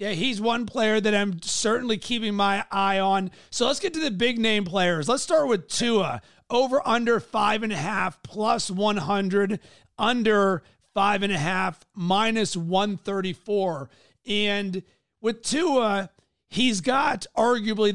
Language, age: English, 40-59